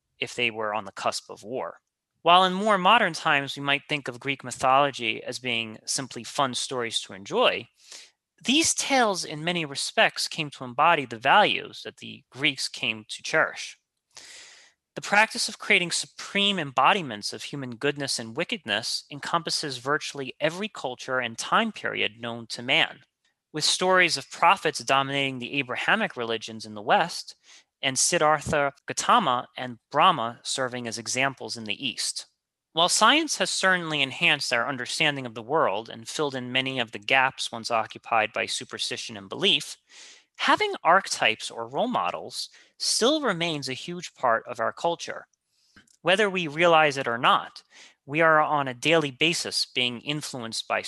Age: 30-49